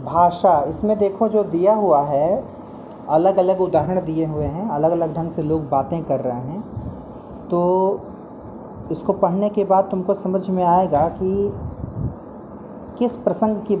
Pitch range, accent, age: 165-220 Hz, native, 40-59